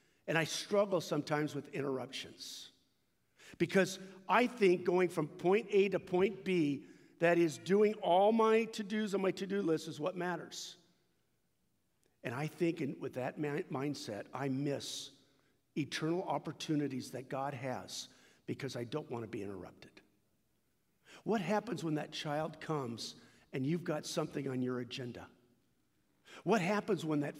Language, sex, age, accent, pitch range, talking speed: English, male, 50-69, American, 135-170 Hz, 155 wpm